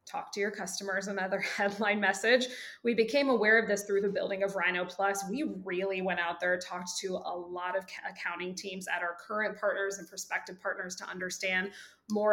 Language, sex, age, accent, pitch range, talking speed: English, female, 20-39, American, 180-220 Hz, 195 wpm